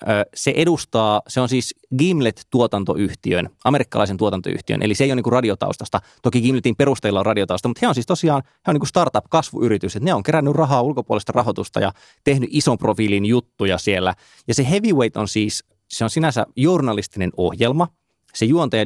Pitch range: 100-130 Hz